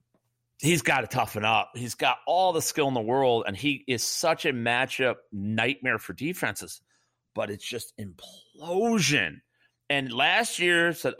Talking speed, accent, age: 160 wpm, American, 40-59